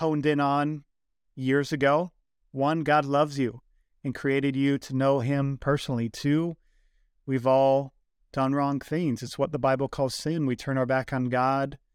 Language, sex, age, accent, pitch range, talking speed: English, male, 30-49, American, 125-140 Hz, 170 wpm